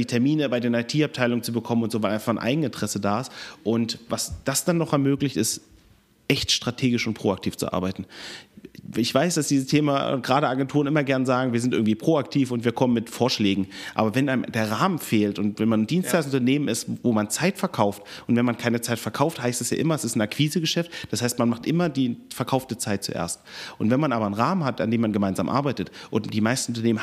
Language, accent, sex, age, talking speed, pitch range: German, German, male, 30-49, 225 wpm, 110-140 Hz